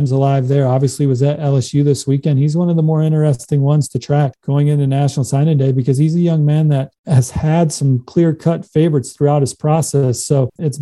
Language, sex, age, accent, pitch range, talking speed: English, male, 40-59, American, 135-155 Hz, 215 wpm